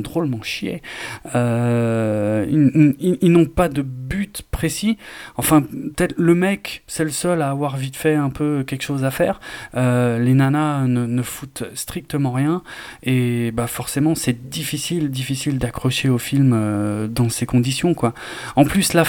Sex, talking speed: male, 165 wpm